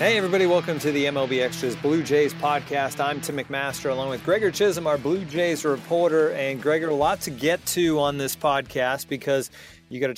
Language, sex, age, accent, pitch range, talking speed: English, male, 30-49, American, 125-155 Hz, 205 wpm